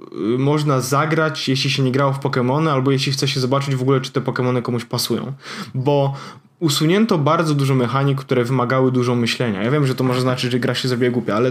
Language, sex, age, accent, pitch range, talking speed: Polish, male, 20-39, native, 130-155 Hz, 215 wpm